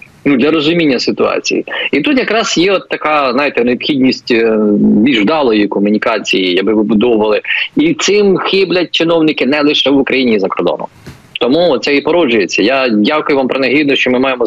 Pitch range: 110-145 Hz